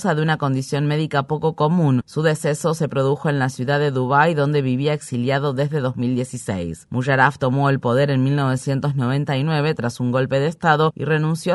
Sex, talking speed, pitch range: female, 170 wpm, 130-155 Hz